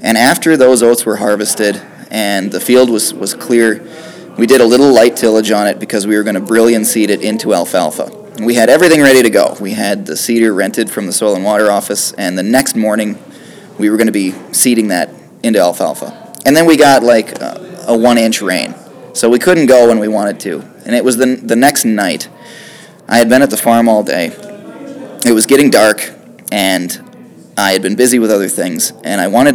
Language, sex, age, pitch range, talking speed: English, male, 20-39, 105-130 Hz, 220 wpm